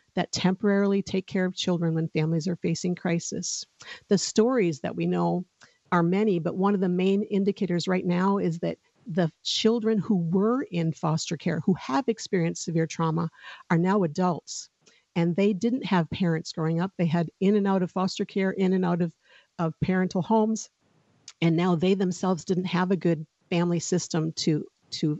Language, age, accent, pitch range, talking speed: English, 50-69, American, 175-205 Hz, 185 wpm